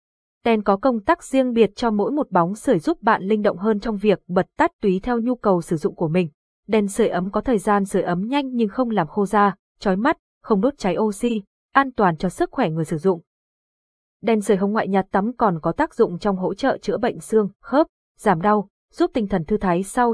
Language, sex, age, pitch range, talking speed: Vietnamese, female, 20-39, 180-235 Hz, 240 wpm